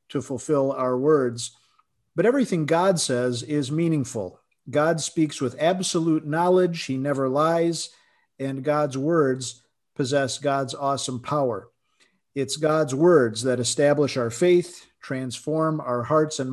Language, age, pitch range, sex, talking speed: English, 50-69, 130-170 Hz, male, 130 wpm